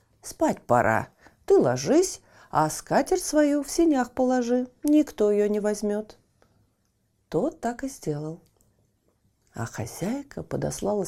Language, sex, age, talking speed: Russian, female, 40-59, 115 wpm